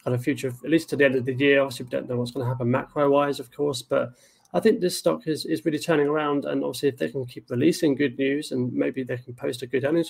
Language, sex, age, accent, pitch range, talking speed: English, male, 30-49, British, 125-145 Hz, 295 wpm